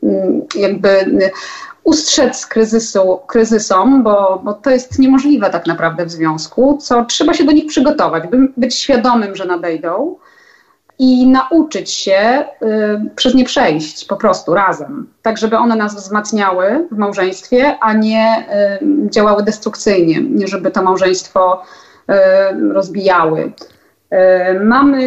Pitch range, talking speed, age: 190-255 Hz, 125 wpm, 30-49